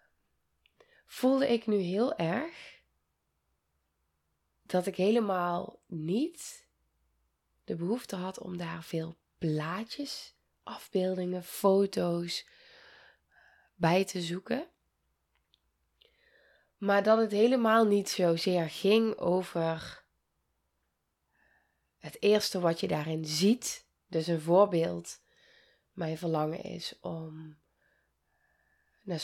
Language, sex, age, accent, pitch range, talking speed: Dutch, female, 20-39, Dutch, 160-200 Hz, 90 wpm